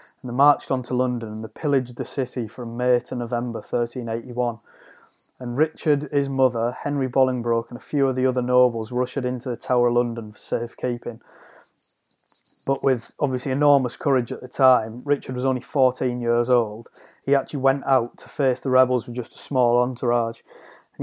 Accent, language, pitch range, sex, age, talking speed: British, English, 120-135 Hz, male, 30-49, 185 wpm